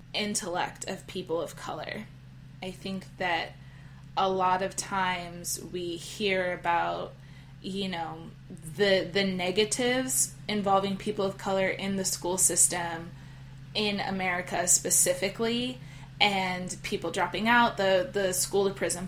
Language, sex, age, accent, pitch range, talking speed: English, female, 20-39, American, 175-200 Hz, 125 wpm